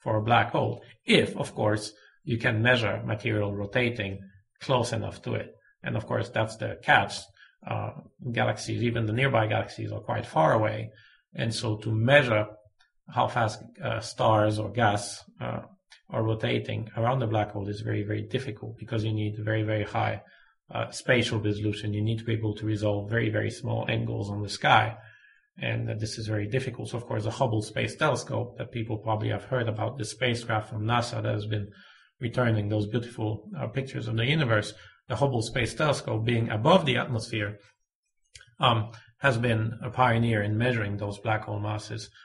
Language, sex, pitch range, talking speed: English, male, 105-120 Hz, 185 wpm